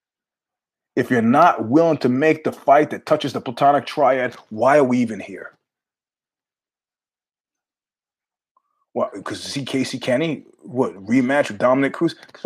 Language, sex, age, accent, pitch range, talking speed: English, male, 30-49, American, 115-155 Hz, 140 wpm